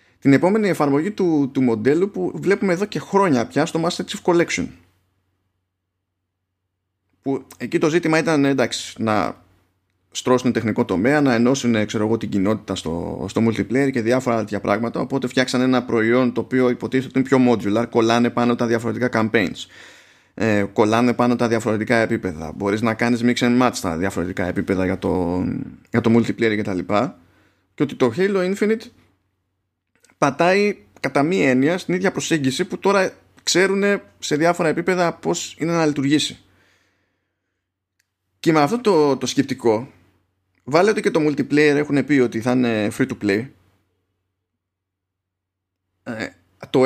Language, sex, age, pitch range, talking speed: Greek, male, 20-39, 95-145 Hz, 150 wpm